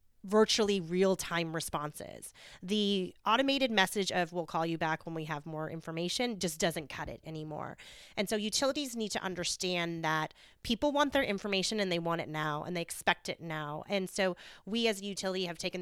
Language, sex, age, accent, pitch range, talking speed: English, female, 30-49, American, 175-220 Hz, 190 wpm